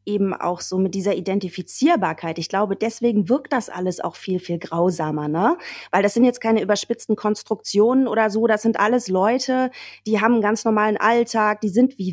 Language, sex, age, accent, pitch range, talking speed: German, female, 30-49, German, 180-225 Hz, 195 wpm